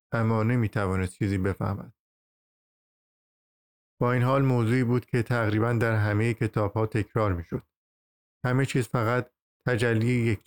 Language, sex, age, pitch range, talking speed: Persian, male, 50-69, 100-120 Hz, 125 wpm